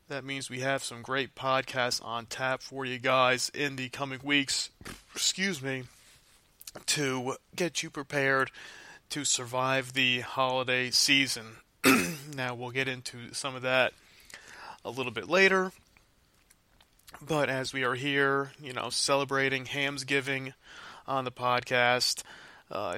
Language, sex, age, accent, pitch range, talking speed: English, male, 30-49, American, 125-140 Hz, 135 wpm